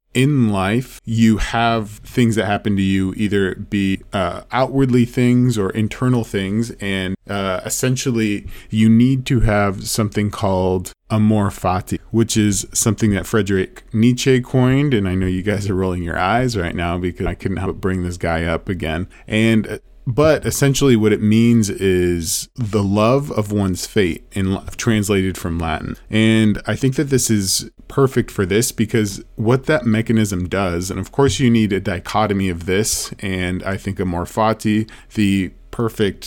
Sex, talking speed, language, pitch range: male, 170 wpm, English, 95-115 Hz